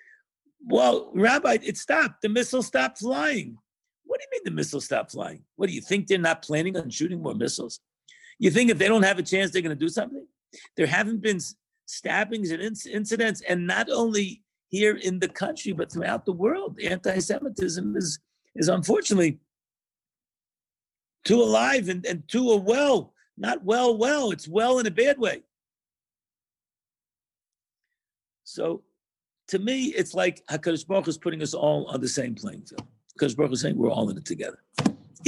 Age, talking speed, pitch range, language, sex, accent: 50-69, 170 wpm, 170-235 Hz, English, male, American